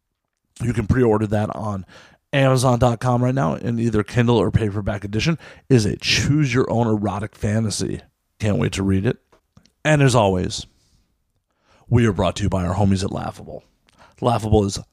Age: 40-59